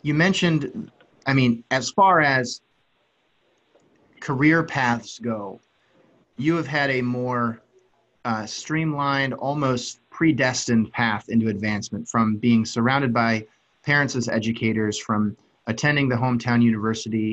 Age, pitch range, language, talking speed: 30-49, 110-130 Hz, English, 120 wpm